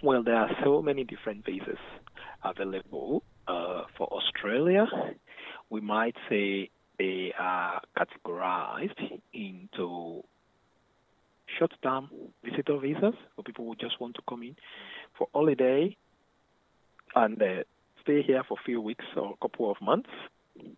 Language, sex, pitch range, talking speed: English, male, 100-135 Hz, 125 wpm